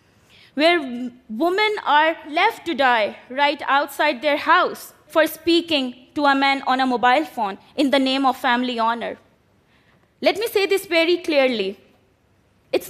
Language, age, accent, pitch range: Korean, 20-39, Indian, 255-310 Hz